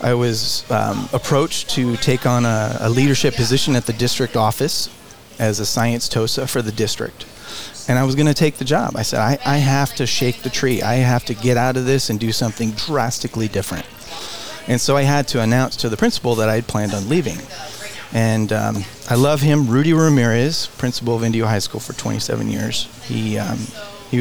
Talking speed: 210 wpm